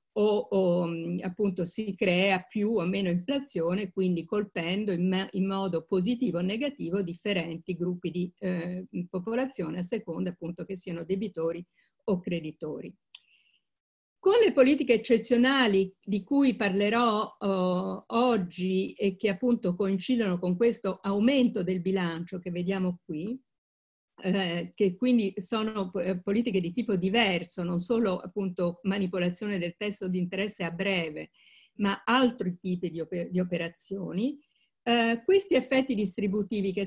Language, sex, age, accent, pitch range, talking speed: Italian, female, 50-69, native, 180-230 Hz, 125 wpm